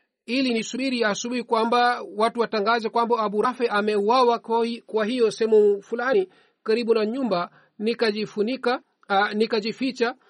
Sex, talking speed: male, 120 wpm